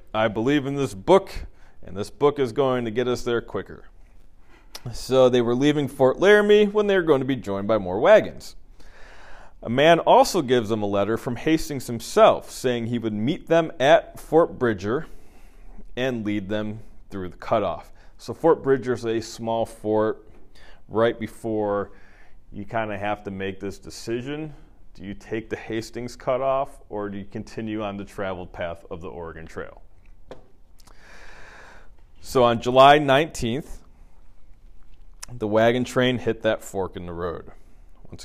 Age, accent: 30-49, American